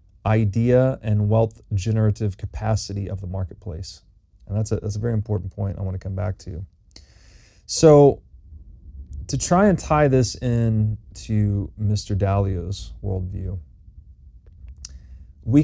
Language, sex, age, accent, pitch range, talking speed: English, male, 30-49, American, 95-115 Hz, 130 wpm